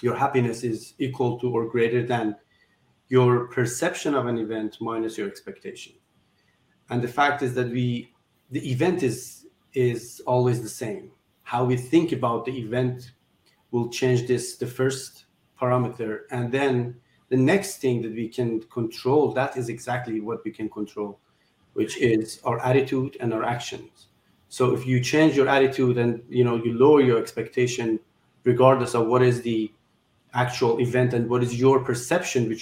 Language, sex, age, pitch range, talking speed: English, male, 40-59, 115-130 Hz, 165 wpm